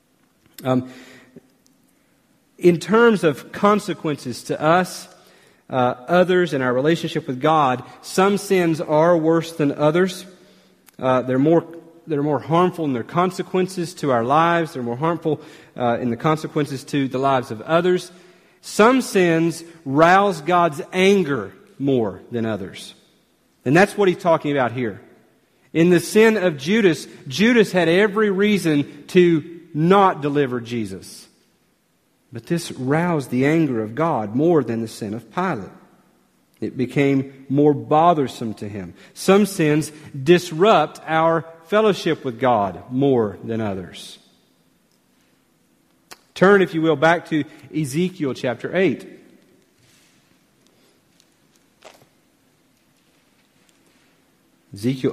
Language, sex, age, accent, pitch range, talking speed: English, male, 40-59, American, 135-180 Hz, 120 wpm